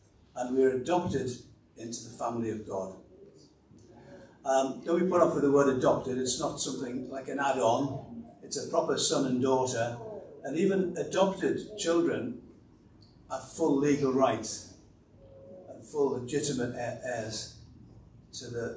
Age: 60-79